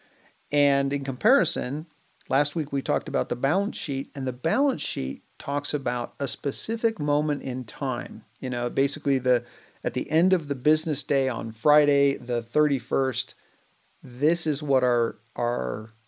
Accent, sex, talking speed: American, male, 155 wpm